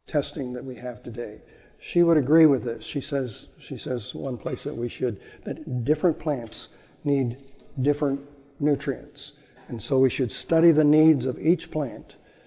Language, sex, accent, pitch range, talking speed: English, male, American, 130-155 Hz, 170 wpm